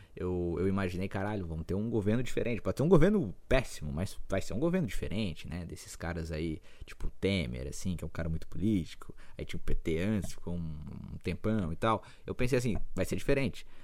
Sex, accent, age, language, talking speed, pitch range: male, Brazilian, 20-39, Portuguese, 215 wpm, 85-125 Hz